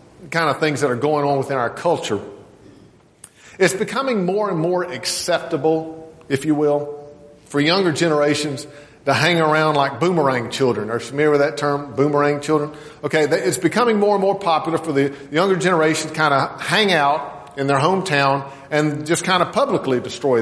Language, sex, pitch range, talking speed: English, male, 140-175 Hz, 180 wpm